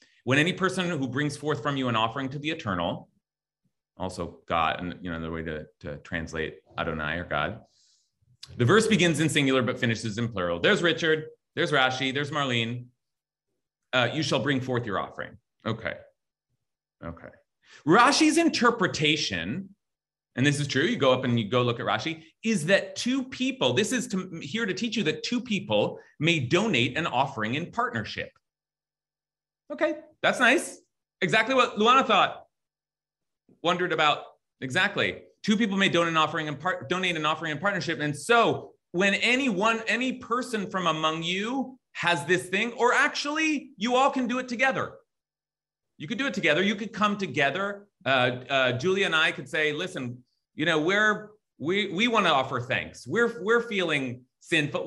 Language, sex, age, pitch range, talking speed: English, male, 30-49, 135-215 Hz, 175 wpm